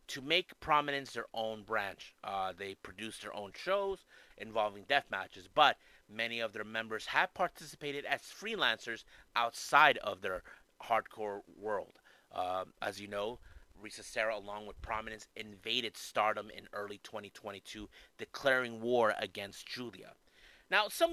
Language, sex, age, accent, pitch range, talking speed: English, male, 30-49, American, 105-145 Hz, 135 wpm